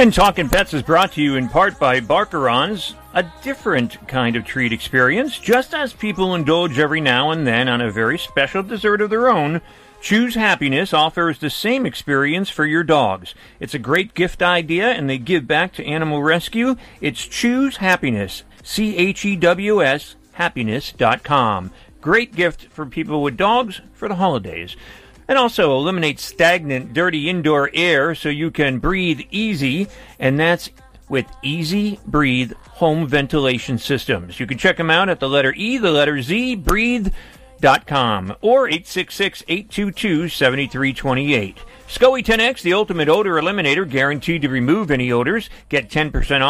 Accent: American